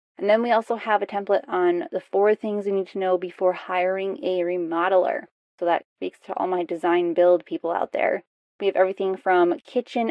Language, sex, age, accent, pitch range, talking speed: English, female, 20-39, American, 185-245 Hz, 210 wpm